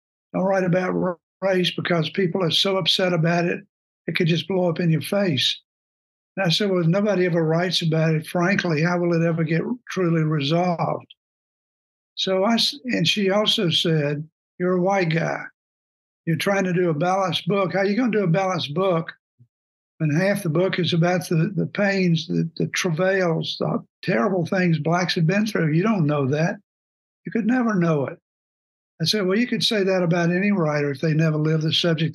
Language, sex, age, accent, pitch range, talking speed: English, male, 60-79, American, 160-190 Hz, 200 wpm